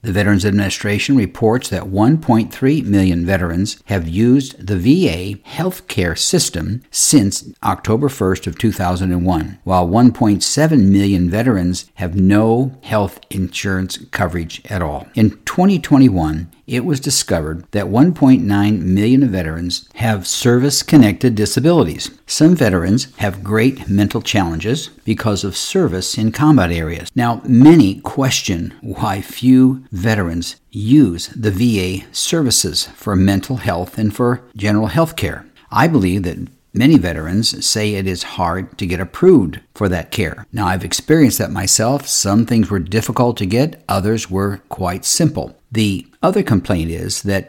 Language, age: English, 60-79